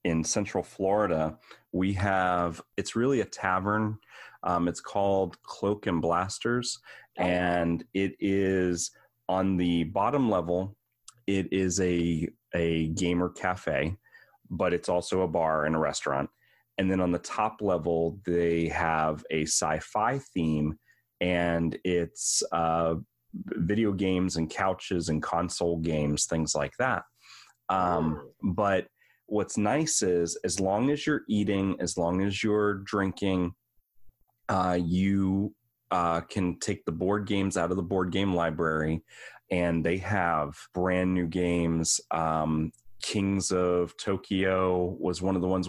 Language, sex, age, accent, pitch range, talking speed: English, male, 30-49, American, 85-100 Hz, 135 wpm